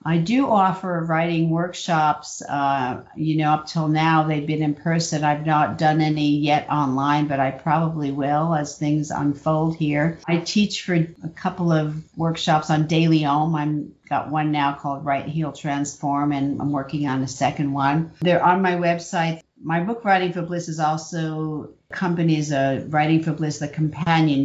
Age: 50-69